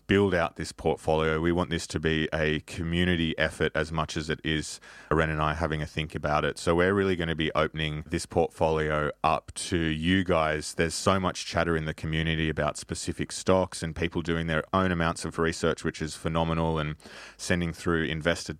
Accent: Australian